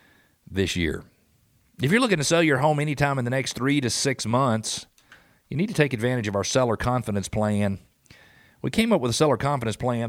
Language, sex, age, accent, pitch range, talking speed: English, male, 40-59, American, 125-175 Hz, 210 wpm